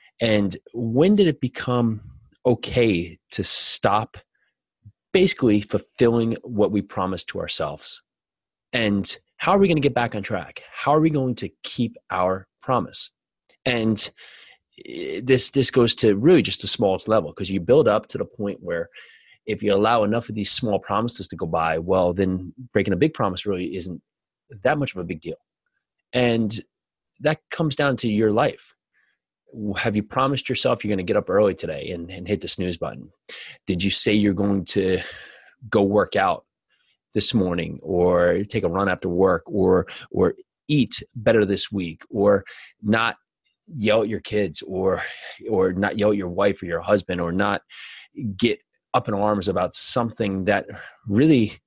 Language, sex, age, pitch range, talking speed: English, male, 30-49, 95-120 Hz, 175 wpm